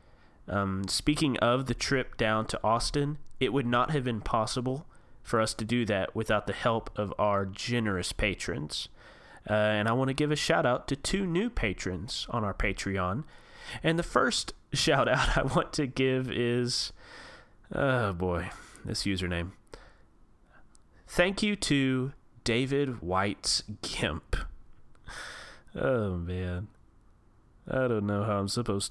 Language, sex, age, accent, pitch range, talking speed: English, male, 30-49, American, 100-135 Hz, 145 wpm